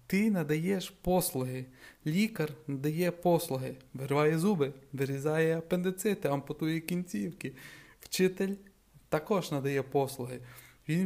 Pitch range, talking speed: 145-180 Hz, 90 wpm